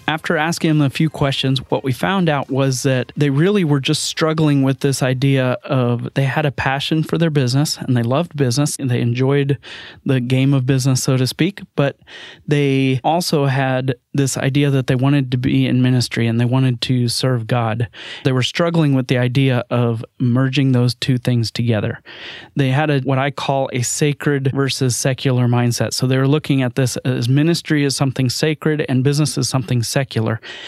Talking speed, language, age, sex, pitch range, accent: 200 wpm, English, 30-49, male, 130-150 Hz, American